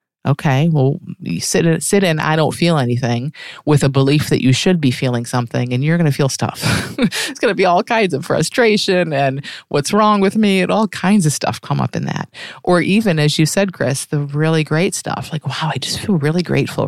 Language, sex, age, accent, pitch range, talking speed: English, female, 30-49, American, 140-195 Hz, 230 wpm